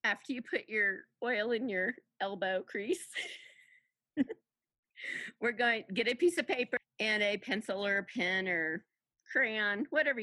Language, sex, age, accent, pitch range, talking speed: English, female, 50-69, American, 185-250 Hz, 155 wpm